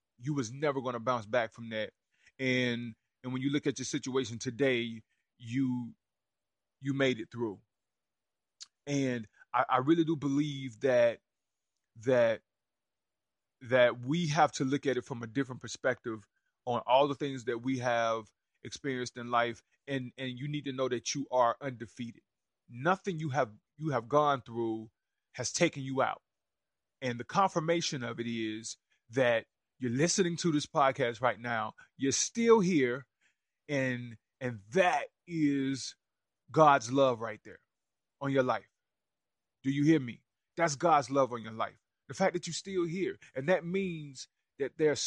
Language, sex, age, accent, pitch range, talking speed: English, male, 30-49, American, 120-150 Hz, 160 wpm